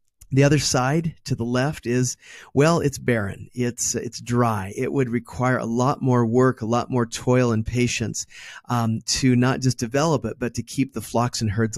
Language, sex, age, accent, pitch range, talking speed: English, male, 30-49, American, 120-150 Hz, 200 wpm